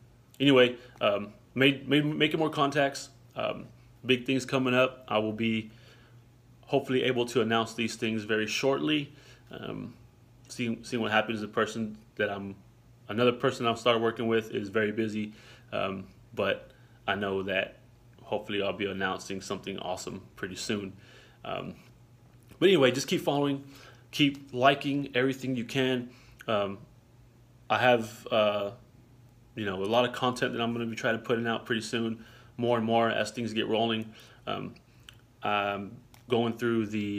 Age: 20-39